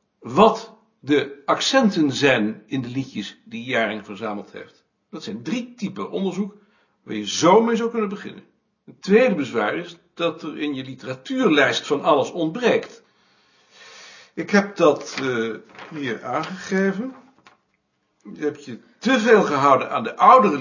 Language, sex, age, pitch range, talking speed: Dutch, male, 60-79, 140-220 Hz, 145 wpm